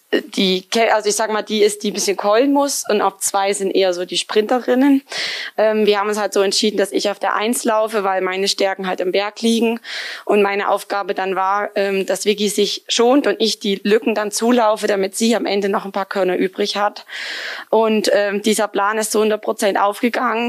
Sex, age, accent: female, 20-39, German